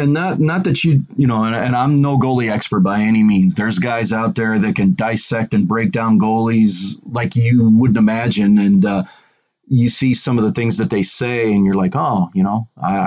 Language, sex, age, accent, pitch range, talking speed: English, male, 40-59, American, 105-130 Hz, 225 wpm